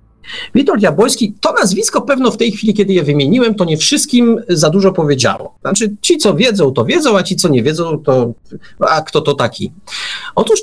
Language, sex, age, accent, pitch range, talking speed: Polish, male, 40-59, native, 130-205 Hz, 190 wpm